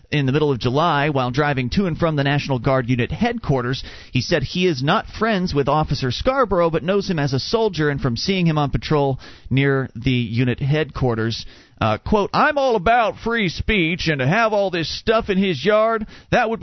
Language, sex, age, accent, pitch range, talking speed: English, male, 40-59, American, 140-215 Hz, 210 wpm